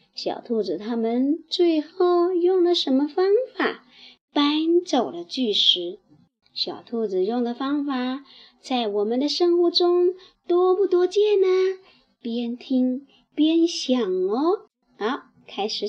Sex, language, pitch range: male, Chinese, 240-365 Hz